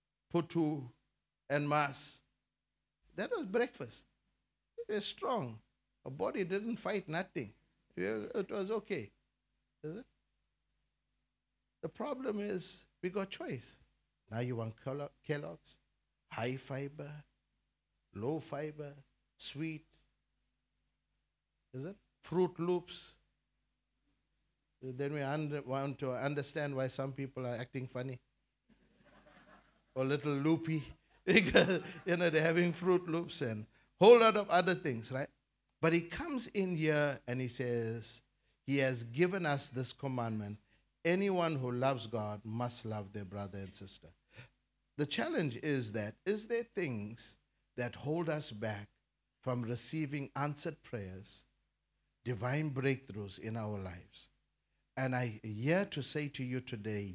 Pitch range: 120-165 Hz